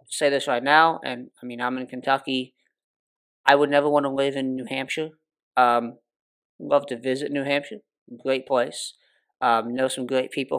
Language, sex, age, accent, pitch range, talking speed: English, male, 30-49, American, 125-145 Hz, 180 wpm